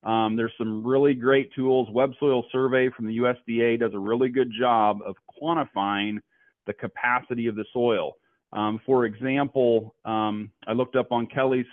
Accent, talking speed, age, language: American, 170 wpm, 40-59, English